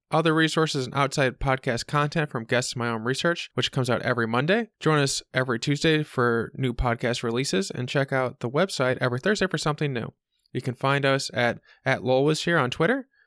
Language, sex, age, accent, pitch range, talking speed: English, male, 20-39, American, 130-160 Hz, 195 wpm